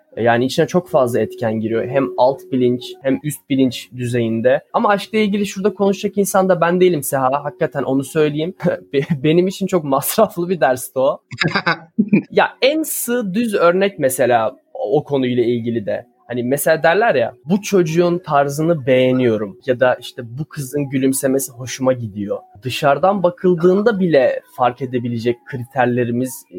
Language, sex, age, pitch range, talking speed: Turkish, male, 20-39, 130-190 Hz, 145 wpm